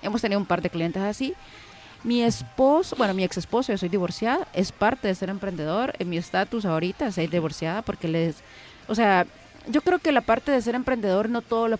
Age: 30-49